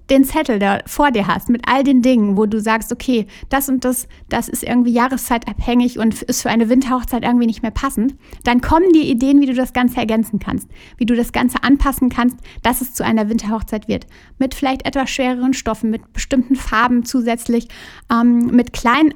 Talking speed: 200 wpm